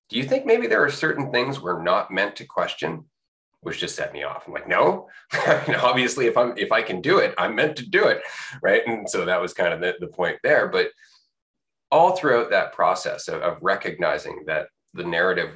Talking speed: 215 wpm